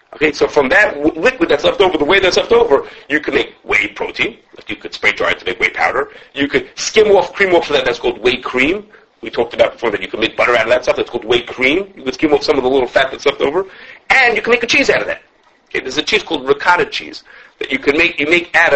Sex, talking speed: male, 300 wpm